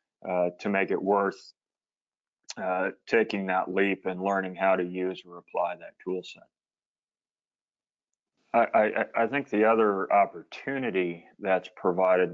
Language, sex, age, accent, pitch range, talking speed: English, male, 30-49, American, 90-95 Hz, 135 wpm